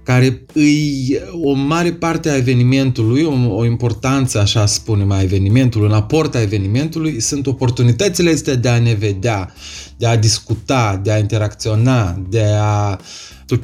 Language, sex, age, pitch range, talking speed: Romanian, male, 30-49, 110-145 Hz, 150 wpm